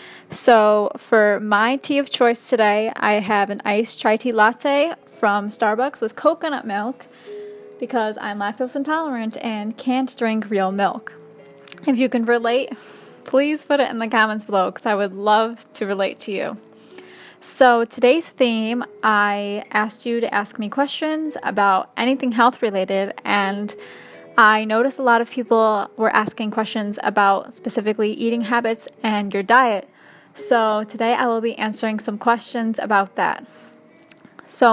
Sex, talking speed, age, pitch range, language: female, 155 wpm, 10-29, 215-260 Hz, English